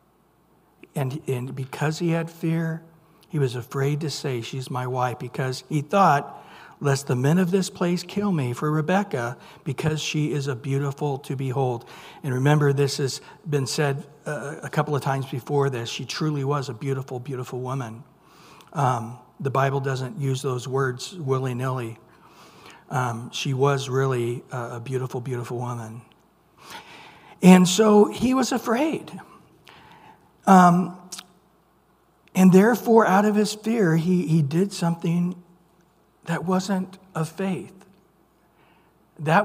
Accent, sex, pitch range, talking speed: American, male, 135-200 Hz, 140 wpm